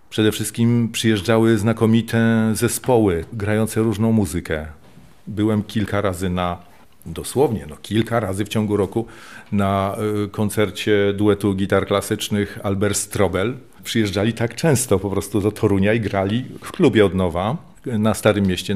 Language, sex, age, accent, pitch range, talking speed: Polish, male, 40-59, native, 100-110 Hz, 135 wpm